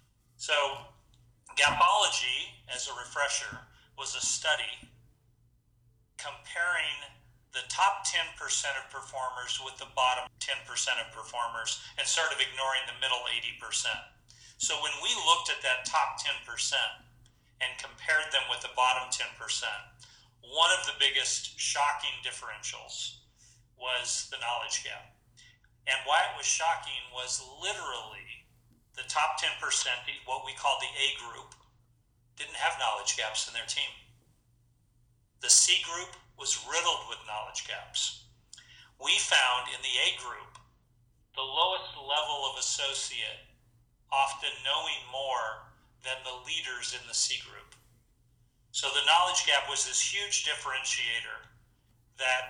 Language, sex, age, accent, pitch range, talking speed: English, male, 40-59, American, 120-135 Hz, 130 wpm